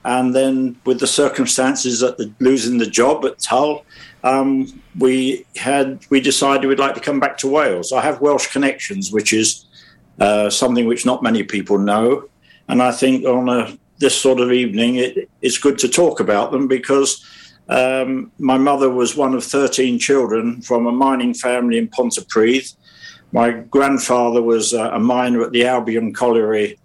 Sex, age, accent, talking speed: male, 50-69, British, 175 wpm